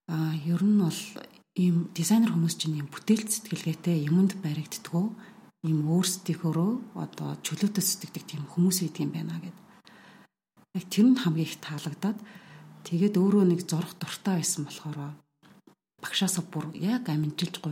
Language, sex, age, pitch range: Russian, female, 40-59, 155-195 Hz